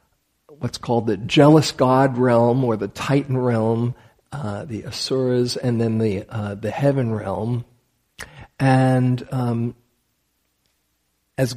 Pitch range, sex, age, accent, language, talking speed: 115-145 Hz, male, 50-69, American, English, 120 wpm